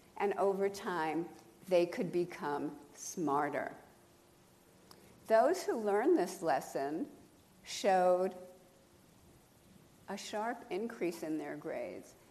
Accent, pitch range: American, 180-255 Hz